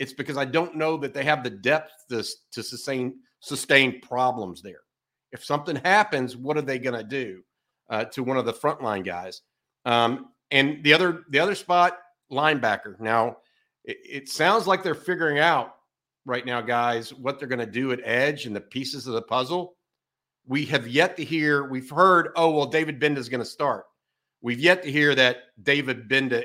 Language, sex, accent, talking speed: English, male, American, 195 wpm